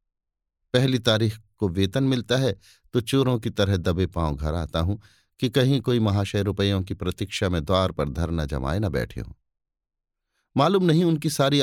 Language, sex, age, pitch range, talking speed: Hindi, male, 50-69, 100-130 Hz, 175 wpm